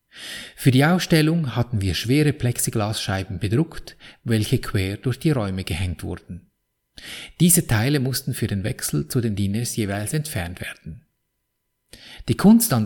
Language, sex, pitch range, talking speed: German, male, 105-140 Hz, 140 wpm